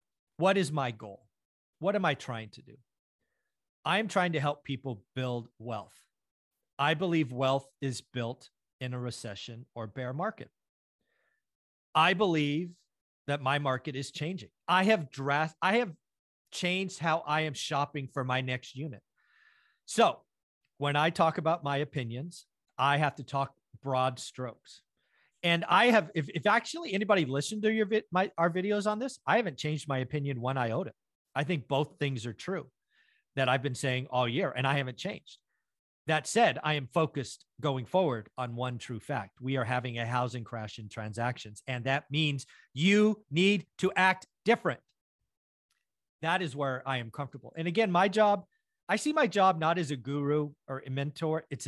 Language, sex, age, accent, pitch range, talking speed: English, male, 40-59, American, 130-175 Hz, 170 wpm